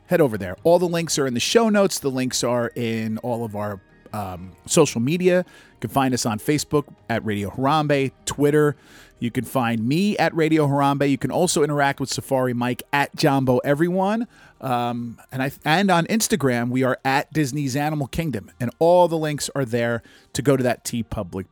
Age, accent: 40-59, American